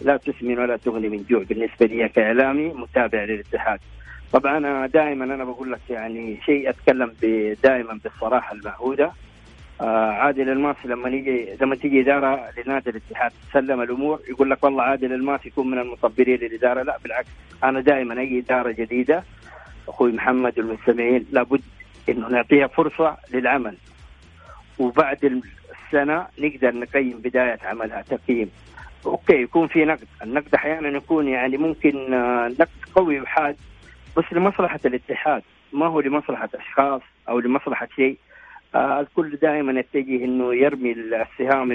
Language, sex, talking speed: Arabic, male, 135 wpm